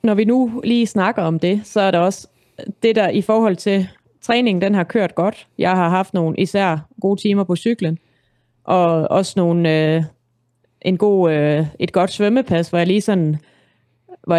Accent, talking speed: native, 190 wpm